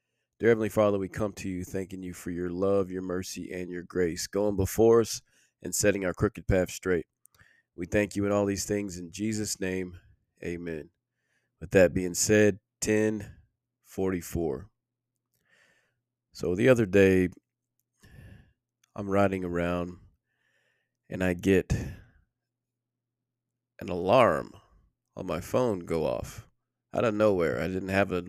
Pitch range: 90-120 Hz